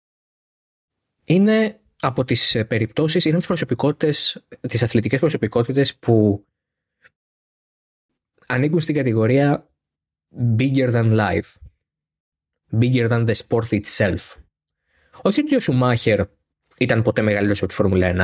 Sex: male